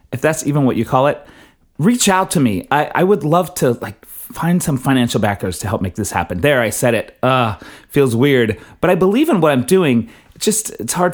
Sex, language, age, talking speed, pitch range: male, English, 30-49, 235 wpm, 110-155 Hz